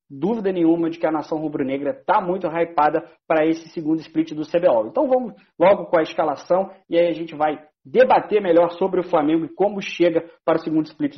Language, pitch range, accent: Portuguese, 150-205 Hz, Brazilian